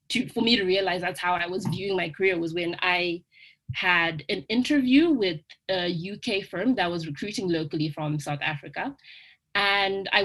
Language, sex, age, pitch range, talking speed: English, female, 20-39, 165-225 Hz, 175 wpm